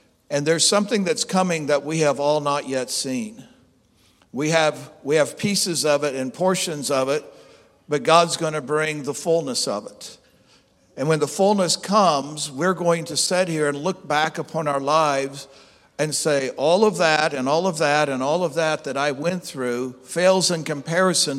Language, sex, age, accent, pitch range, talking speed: English, male, 60-79, American, 135-170 Hz, 190 wpm